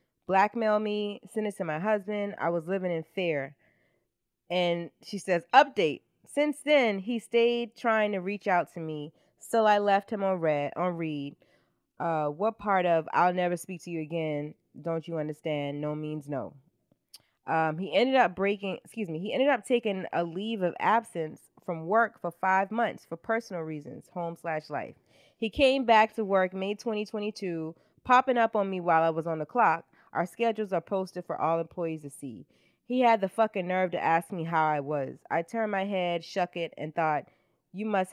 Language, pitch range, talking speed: English, 160-205 Hz, 190 wpm